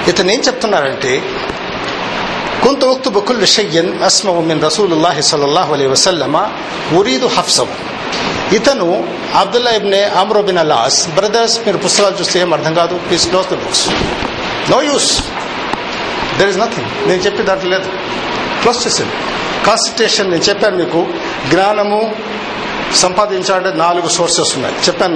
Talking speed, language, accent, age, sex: 50 wpm, Telugu, native, 50-69, male